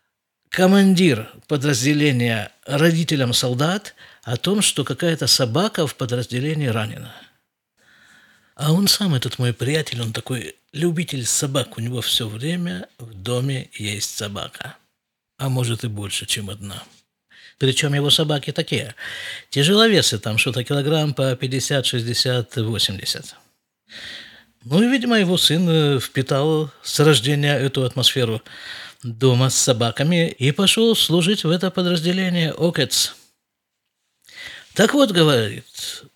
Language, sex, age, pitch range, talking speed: Russian, male, 50-69, 120-175 Hz, 115 wpm